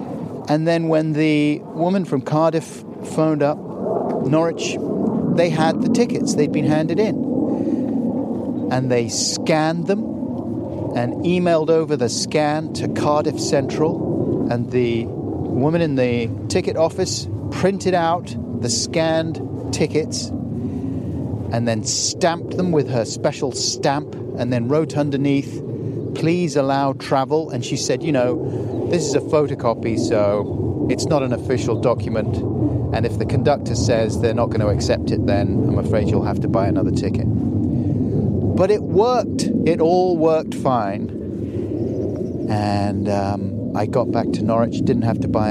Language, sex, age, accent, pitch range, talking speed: English, male, 40-59, British, 115-160 Hz, 145 wpm